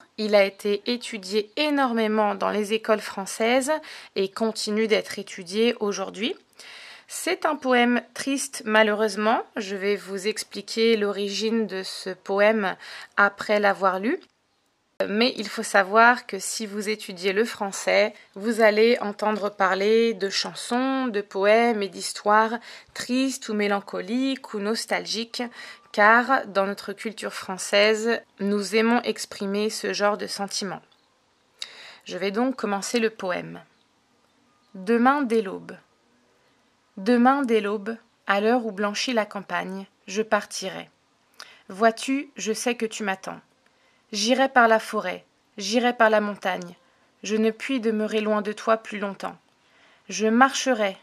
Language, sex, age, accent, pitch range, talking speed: French, female, 20-39, French, 205-240 Hz, 130 wpm